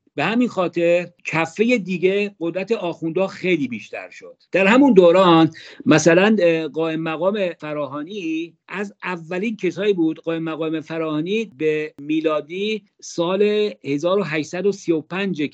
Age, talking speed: 50-69, 110 wpm